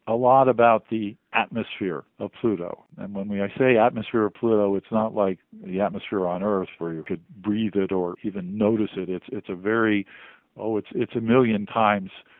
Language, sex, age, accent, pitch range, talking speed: English, male, 50-69, American, 95-110 Hz, 195 wpm